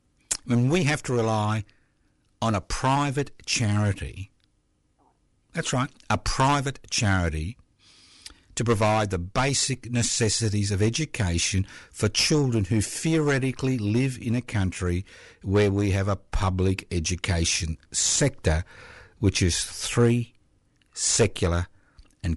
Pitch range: 95-135 Hz